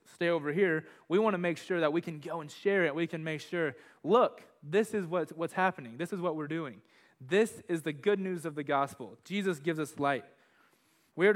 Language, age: English, 20-39